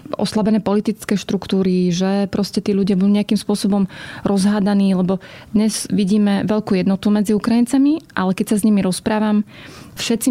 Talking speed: 145 wpm